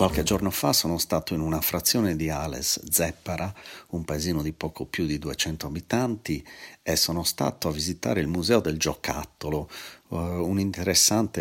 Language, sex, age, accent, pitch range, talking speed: Italian, male, 40-59, native, 75-90 Hz, 155 wpm